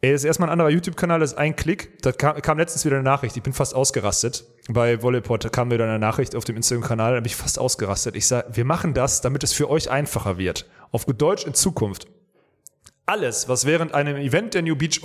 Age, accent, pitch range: 30-49, German, 120-155 Hz